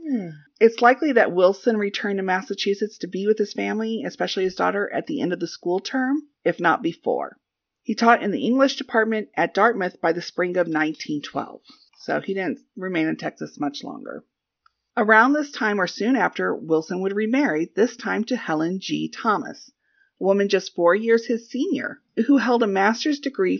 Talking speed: 185 wpm